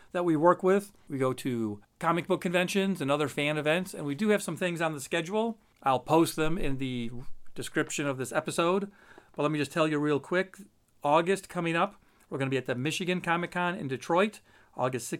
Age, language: 40-59, English